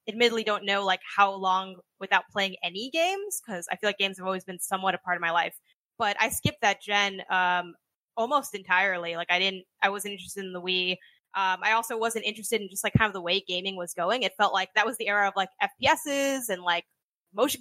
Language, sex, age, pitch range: English, female, 10-29, 190-230 Hz